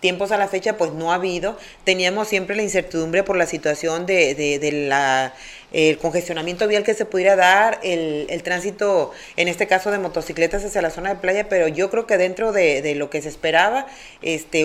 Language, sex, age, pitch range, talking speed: Spanish, female, 30-49, 165-210 Hz, 205 wpm